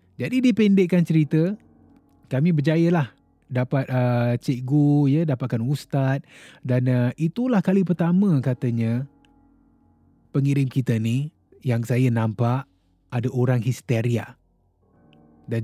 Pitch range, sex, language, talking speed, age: 115-150 Hz, male, Malay, 105 wpm, 20-39